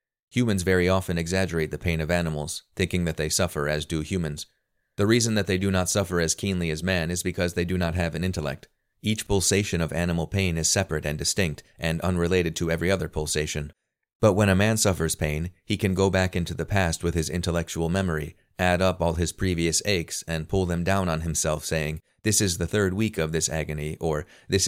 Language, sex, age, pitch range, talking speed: English, male, 30-49, 80-95 Hz, 215 wpm